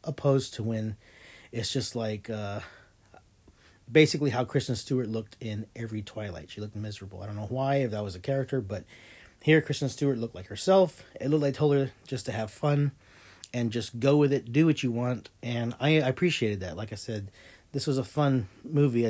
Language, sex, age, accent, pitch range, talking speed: English, male, 40-59, American, 105-135 Hz, 205 wpm